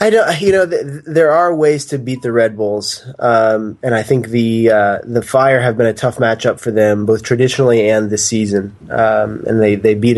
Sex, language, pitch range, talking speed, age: male, English, 110-120 Hz, 225 wpm, 20-39